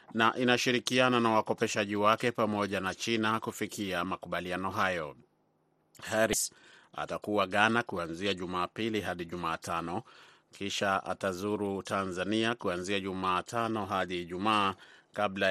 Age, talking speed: 30-49, 100 wpm